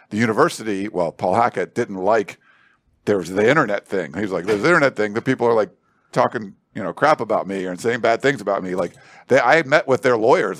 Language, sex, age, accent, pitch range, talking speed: English, male, 50-69, American, 95-130 Hz, 230 wpm